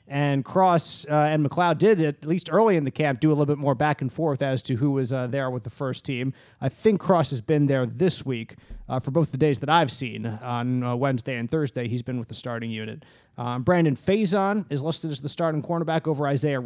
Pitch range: 130-170 Hz